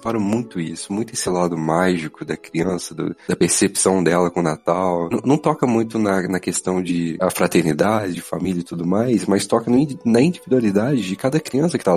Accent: Brazilian